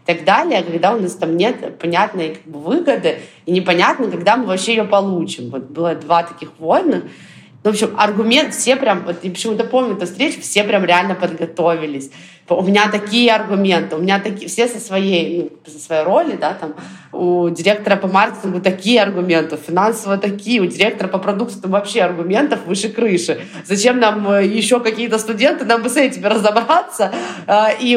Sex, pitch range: female, 175-225 Hz